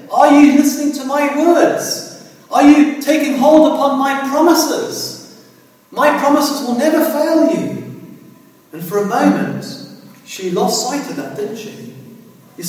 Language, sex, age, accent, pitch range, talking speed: English, male, 40-59, British, 200-300 Hz, 145 wpm